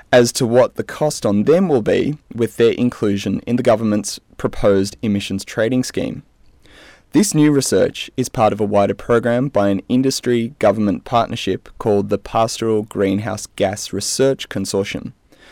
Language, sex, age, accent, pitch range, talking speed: English, male, 20-39, Australian, 100-125 Hz, 150 wpm